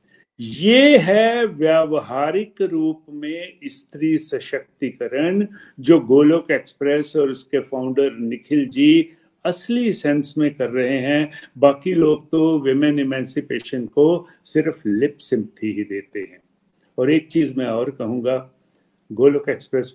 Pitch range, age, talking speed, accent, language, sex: 140-190 Hz, 50-69, 125 wpm, native, Hindi, male